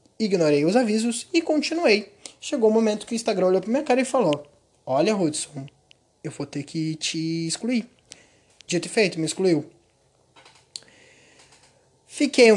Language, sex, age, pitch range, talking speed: Portuguese, male, 20-39, 155-225 Hz, 155 wpm